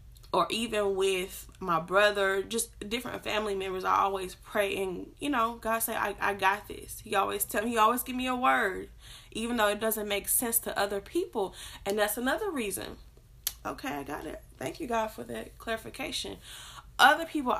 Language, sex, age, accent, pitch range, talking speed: English, female, 10-29, American, 195-235 Hz, 190 wpm